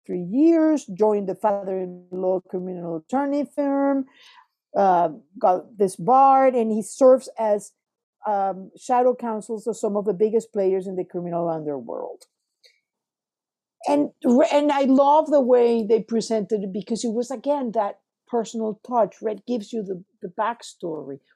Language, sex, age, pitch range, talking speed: English, female, 50-69, 210-285 Hz, 145 wpm